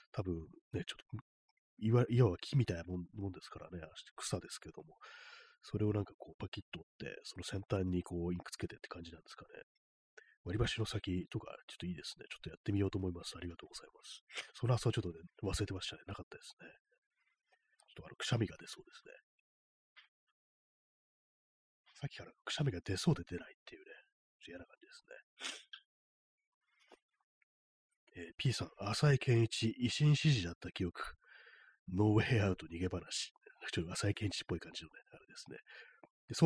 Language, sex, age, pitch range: Japanese, male, 40-59, 90-130 Hz